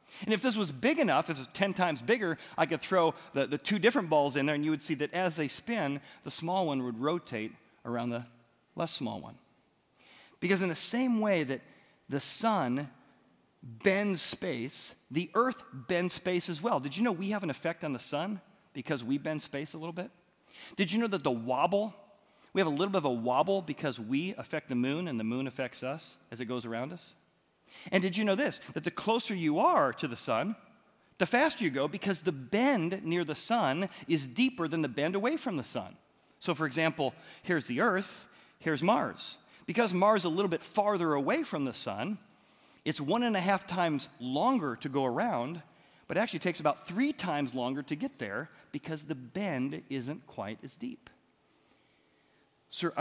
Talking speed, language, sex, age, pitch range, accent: 205 wpm, English, male, 40-59, 140-200 Hz, American